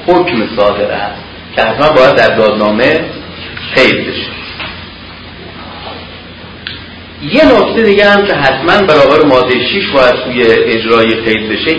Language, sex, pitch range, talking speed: Persian, male, 85-125 Hz, 110 wpm